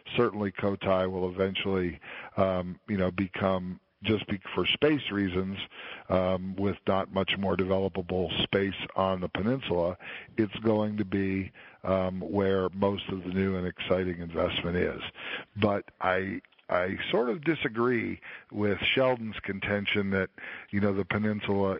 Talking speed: 140 wpm